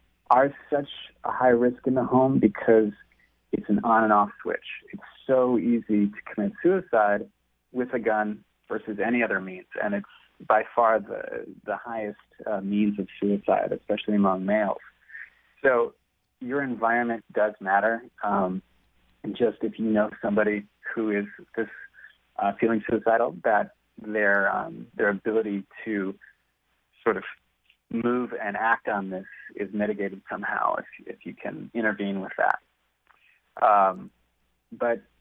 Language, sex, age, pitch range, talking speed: English, male, 30-49, 100-120 Hz, 140 wpm